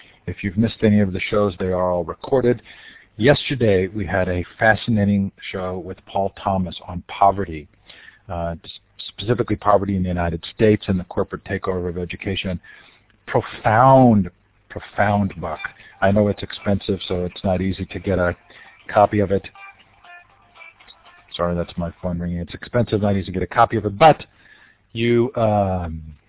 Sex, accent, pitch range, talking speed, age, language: male, American, 90-105 Hz, 160 wpm, 50-69, English